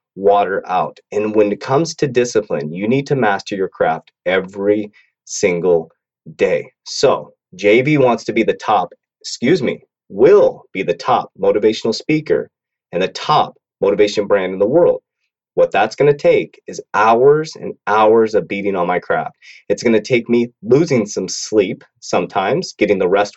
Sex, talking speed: male, 170 wpm